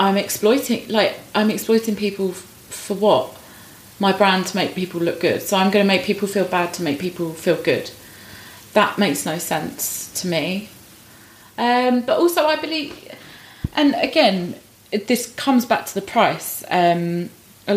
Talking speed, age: 170 wpm, 20-39